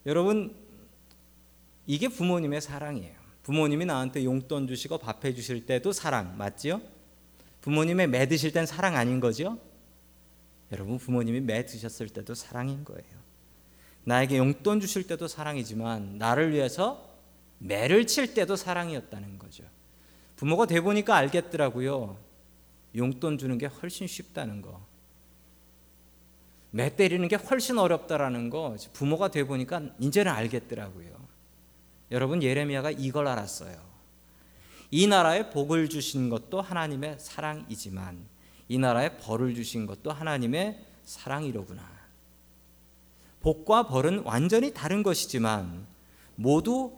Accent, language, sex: native, Korean, male